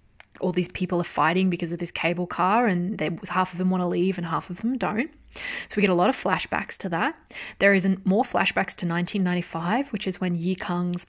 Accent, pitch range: Australian, 175-200 Hz